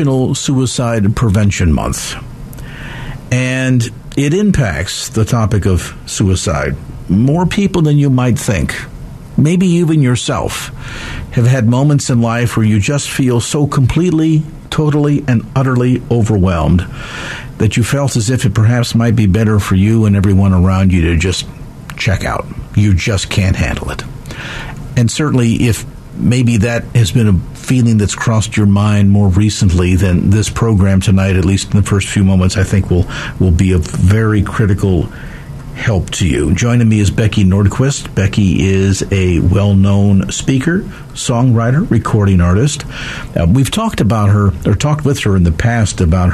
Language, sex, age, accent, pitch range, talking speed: English, male, 50-69, American, 95-130 Hz, 160 wpm